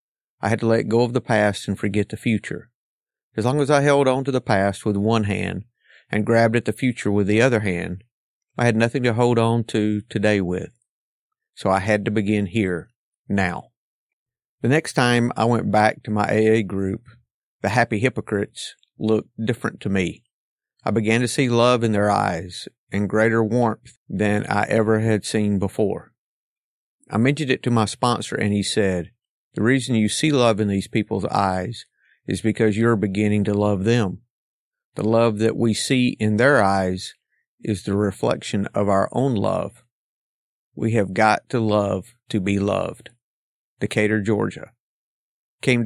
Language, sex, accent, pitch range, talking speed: English, male, American, 105-120 Hz, 175 wpm